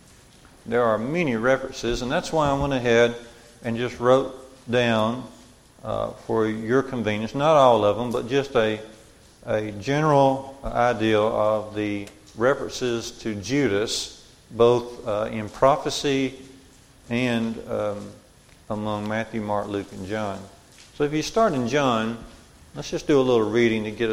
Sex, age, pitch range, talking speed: male, 40-59, 110-135 Hz, 145 wpm